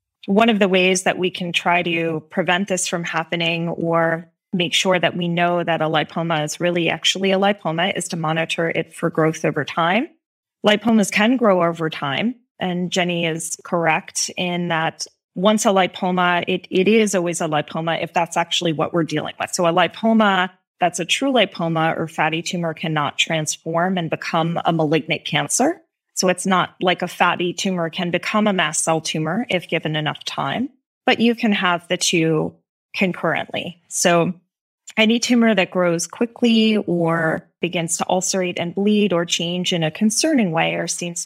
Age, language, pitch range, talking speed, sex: 20-39, English, 165-195 Hz, 180 wpm, female